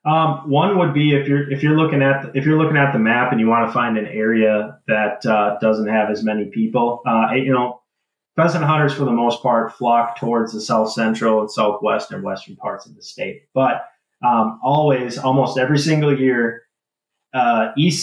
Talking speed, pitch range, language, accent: 205 wpm, 115-145 Hz, English, American